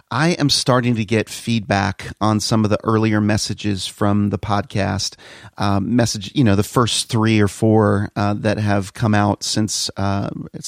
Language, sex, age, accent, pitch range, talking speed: English, male, 40-59, American, 100-115 Hz, 175 wpm